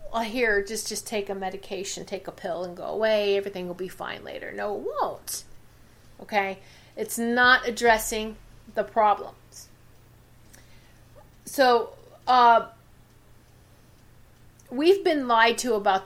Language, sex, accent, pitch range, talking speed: English, female, American, 195-275 Hz, 125 wpm